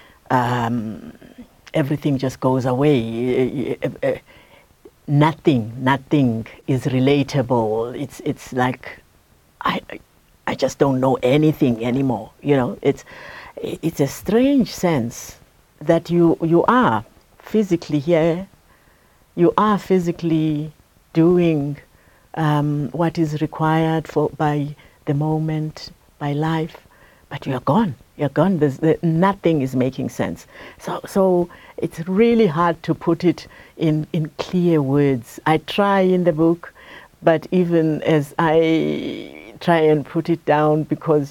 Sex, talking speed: female, 125 wpm